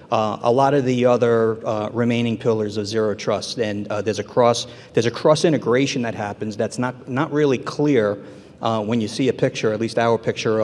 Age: 40-59